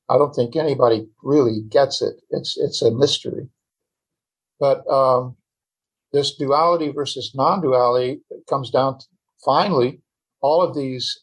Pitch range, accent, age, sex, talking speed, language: 125-155 Hz, American, 50-69, male, 130 wpm, English